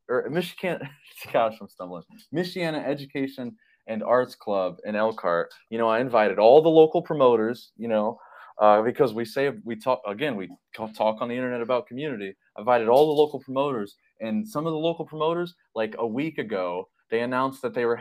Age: 20-39